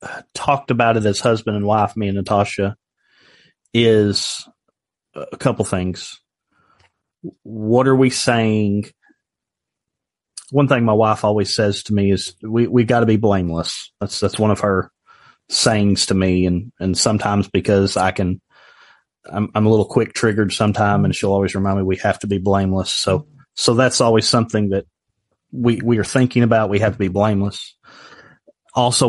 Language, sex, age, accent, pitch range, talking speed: English, male, 30-49, American, 100-115 Hz, 165 wpm